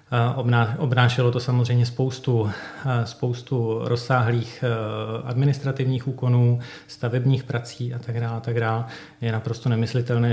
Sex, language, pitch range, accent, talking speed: male, Czech, 115-130 Hz, native, 105 wpm